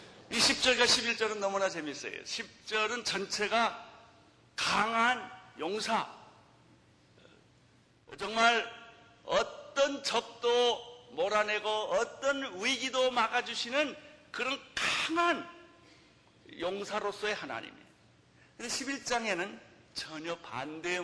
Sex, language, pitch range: male, Korean, 155-230 Hz